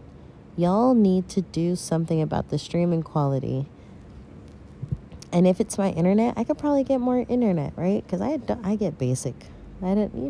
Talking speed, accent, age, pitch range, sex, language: 170 wpm, American, 20-39, 145-210 Hz, female, English